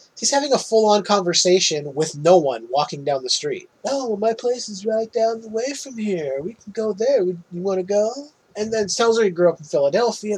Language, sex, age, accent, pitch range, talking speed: English, male, 30-49, American, 155-220 Hz, 225 wpm